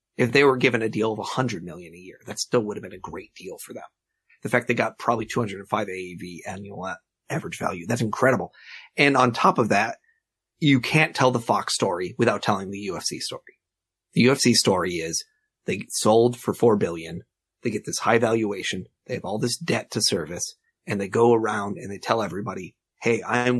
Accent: American